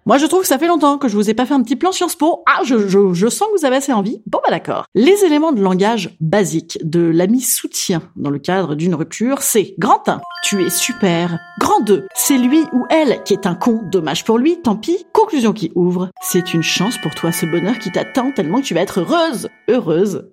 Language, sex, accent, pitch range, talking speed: French, female, French, 180-285 Hz, 245 wpm